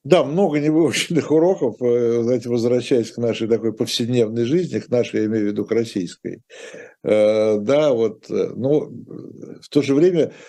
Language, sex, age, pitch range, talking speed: Russian, male, 60-79, 110-145 Hz, 160 wpm